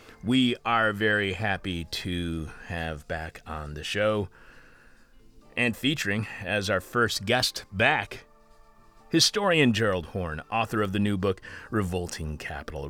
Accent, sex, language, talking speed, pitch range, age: American, male, English, 125 wpm, 90-125 Hz, 40-59